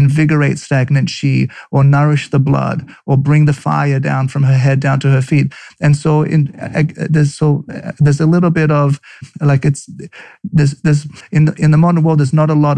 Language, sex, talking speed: English, male, 205 wpm